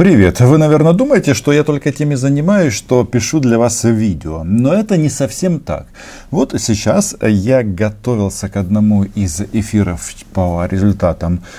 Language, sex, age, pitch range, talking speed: Russian, male, 40-59, 90-120 Hz, 150 wpm